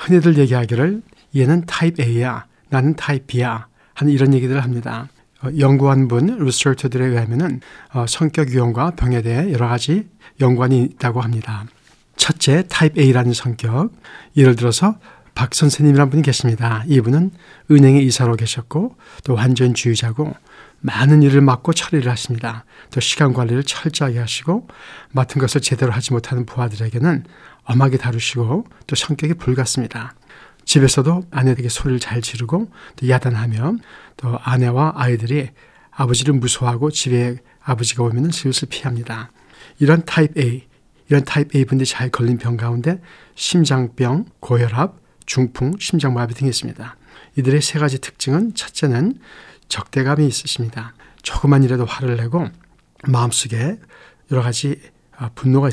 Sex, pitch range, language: male, 120-150 Hz, Korean